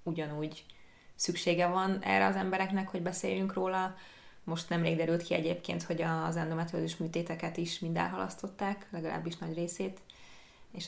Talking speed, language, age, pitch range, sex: 130 wpm, Hungarian, 20-39, 160-180 Hz, female